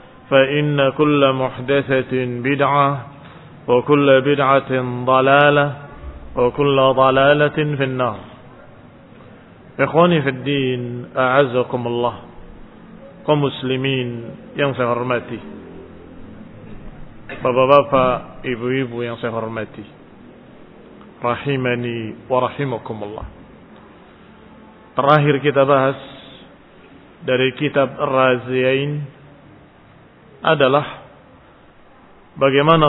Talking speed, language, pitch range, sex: 55 wpm, Indonesian, 125-145 Hz, male